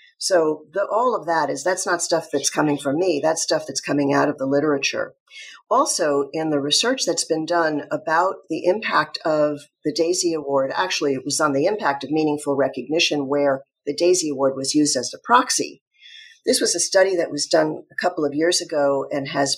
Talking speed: 205 wpm